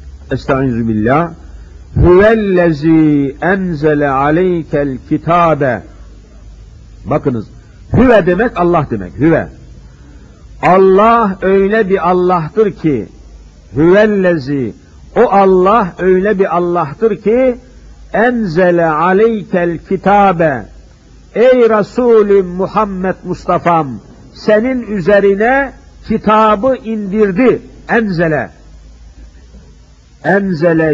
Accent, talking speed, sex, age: native, 70 wpm, male, 50-69